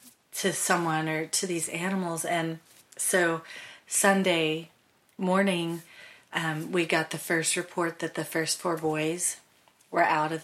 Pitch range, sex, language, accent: 160-180 Hz, female, English, American